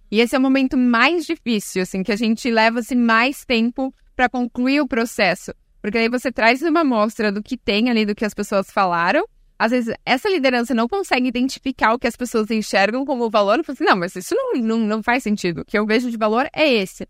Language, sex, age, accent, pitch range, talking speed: Portuguese, female, 10-29, Brazilian, 210-265 Hz, 220 wpm